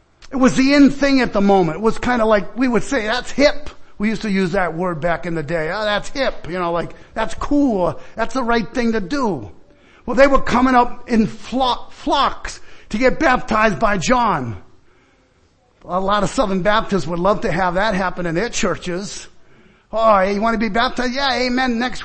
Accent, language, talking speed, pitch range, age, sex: American, English, 210 wpm, 190-245 Hz, 50-69, male